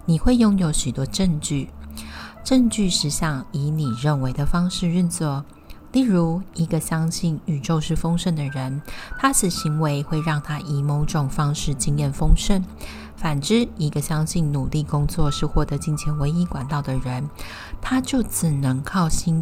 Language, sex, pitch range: Chinese, female, 140-170 Hz